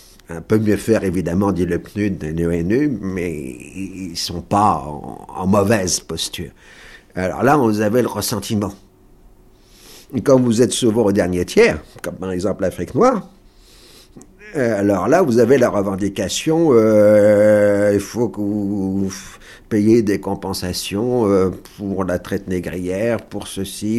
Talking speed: 145 wpm